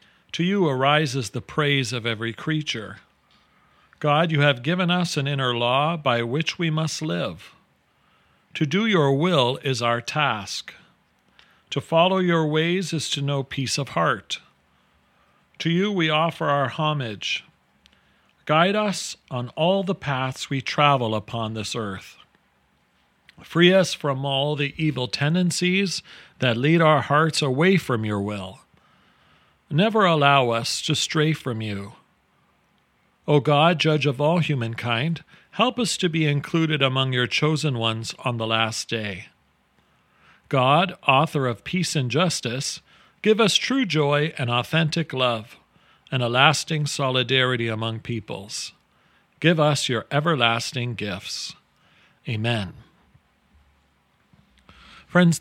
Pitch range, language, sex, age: 125-160 Hz, English, male, 40-59